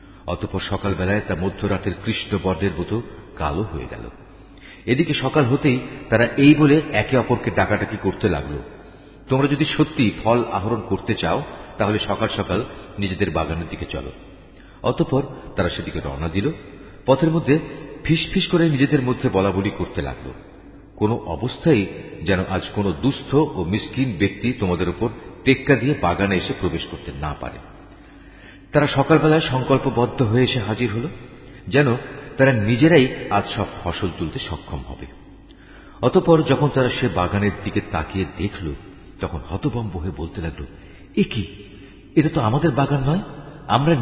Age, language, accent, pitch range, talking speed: 50-69, Bengali, native, 95-140 Hz, 145 wpm